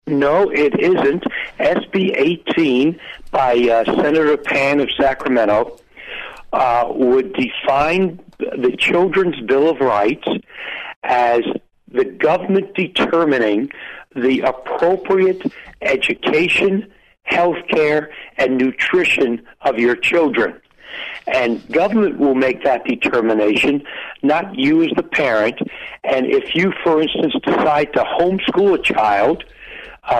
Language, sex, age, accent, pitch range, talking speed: English, male, 60-79, American, 130-220 Hz, 110 wpm